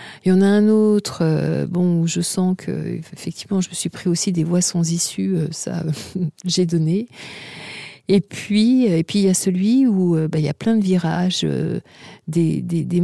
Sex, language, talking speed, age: female, French, 200 wpm, 50-69